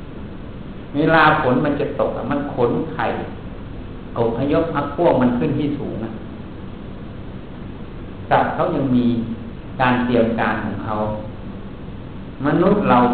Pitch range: 110-140 Hz